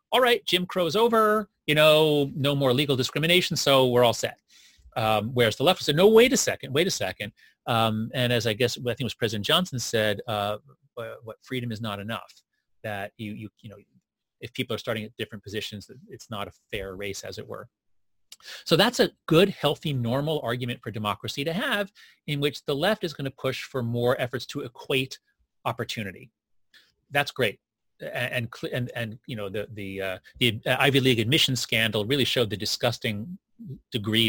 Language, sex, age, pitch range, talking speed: English, male, 30-49, 110-145 Hz, 195 wpm